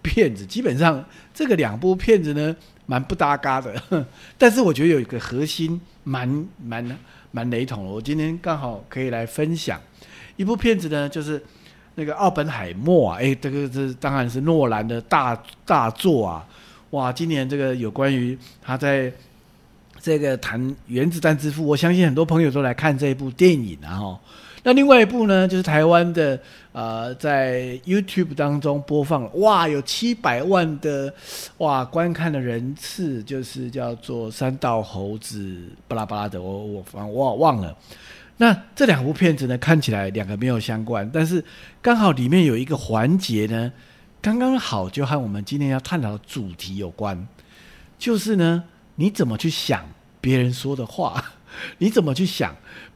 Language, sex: English, male